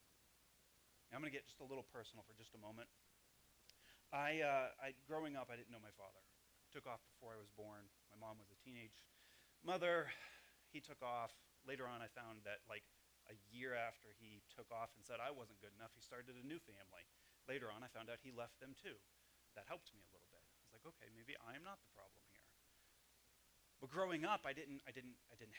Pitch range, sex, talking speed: 105-140 Hz, male, 225 wpm